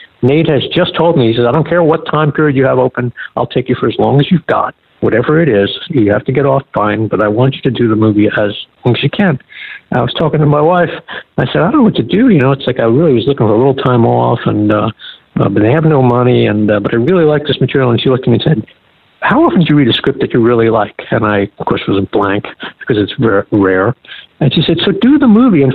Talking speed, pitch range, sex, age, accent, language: 290 wpm, 110-160 Hz, male, 60-79, American, English